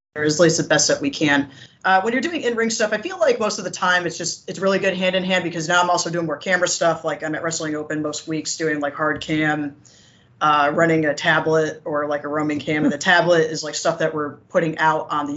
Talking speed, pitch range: 270 wpm, 150-185 Hz